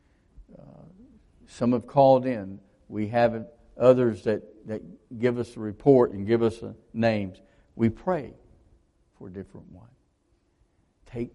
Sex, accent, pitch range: male, American, 95-130 Hz